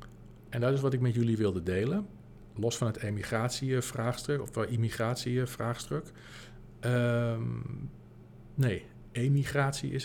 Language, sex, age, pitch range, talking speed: Dutch, male, 50-69, 110-130 Hz, 115 wpm